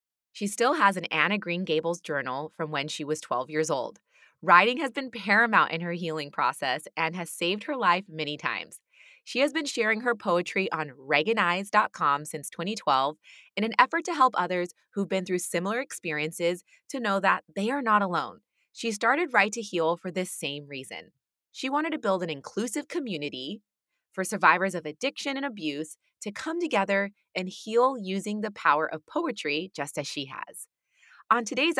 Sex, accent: female, American